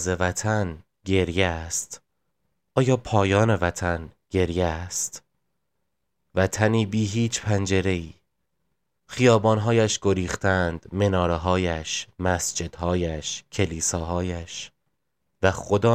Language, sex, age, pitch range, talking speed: Persian, male, 20-39, 90-110 Hz, 80 wpm